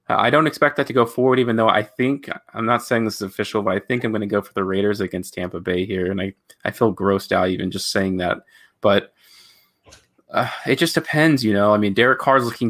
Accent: American